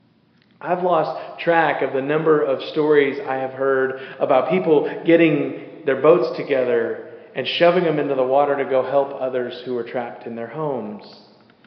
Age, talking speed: 40-59, 170 wpm